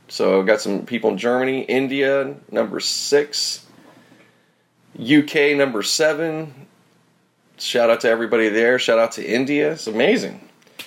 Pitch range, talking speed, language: 110-145 Hz, 125 wpm, English